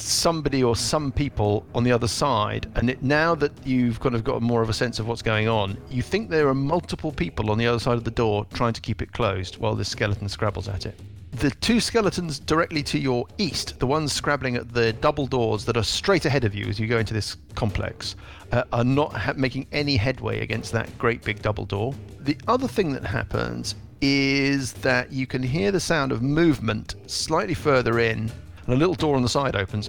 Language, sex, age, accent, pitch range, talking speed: English, male, 40-59, British, 110-140 Hz, 225 wpm